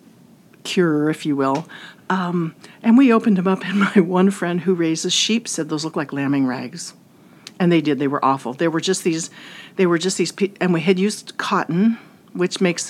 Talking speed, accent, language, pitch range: 205 wpm, American, English, 180-235 Hz